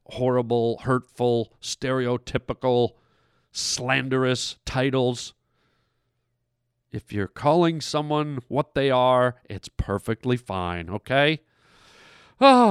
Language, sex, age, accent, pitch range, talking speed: English, male, 50-69, American, 125-185 Hz, 80 wpm